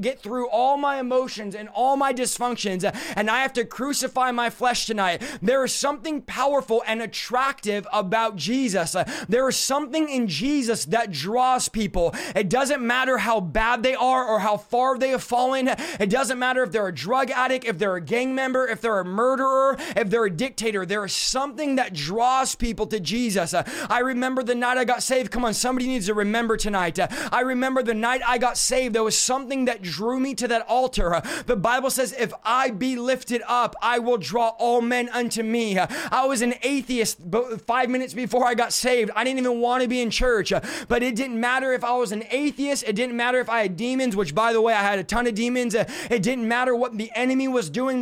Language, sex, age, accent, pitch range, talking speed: English, male, 20-39, American, 225-260 Hz, 215 wpm